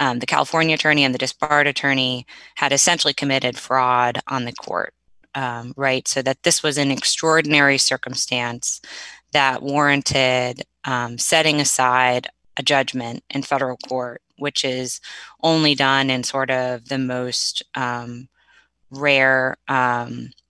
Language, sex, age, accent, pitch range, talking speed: English, female, 10-29, American, 130-145 Hz, 135 wpm